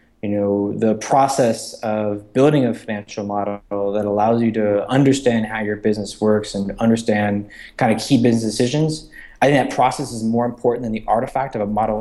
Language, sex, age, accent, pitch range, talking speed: English, male, 20-39, American, 105-120 Hz, 190 wpm